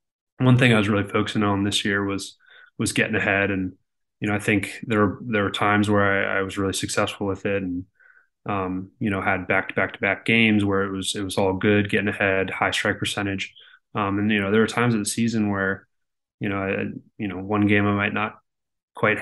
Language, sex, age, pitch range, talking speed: English, male, 20-39, 100-110 Hz, 235 wpm